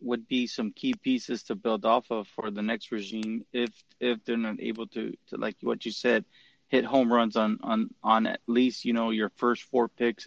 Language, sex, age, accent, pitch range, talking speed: English, male, 20-39, American, 115-125 Hz, 220 wpm